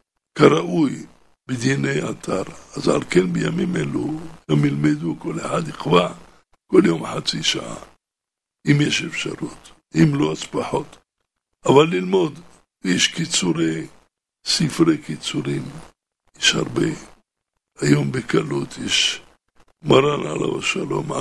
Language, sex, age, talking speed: Hebrew, male, 60-79, 105 wpm